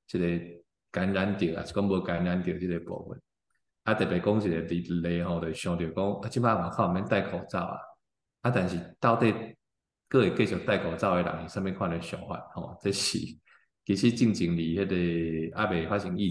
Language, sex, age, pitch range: Chinese, male, 20-39, 85-100 Hz